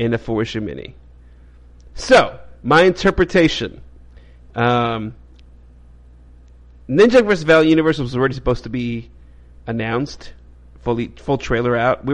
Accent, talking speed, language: American, 110 wpm, English